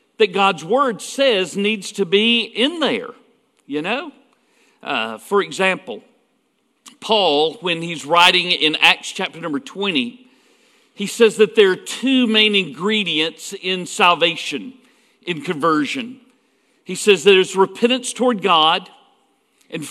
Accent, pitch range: American, 200-255 Hz